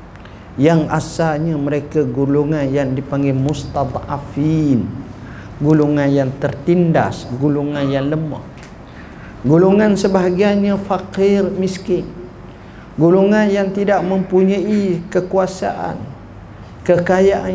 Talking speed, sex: 80 wpm, male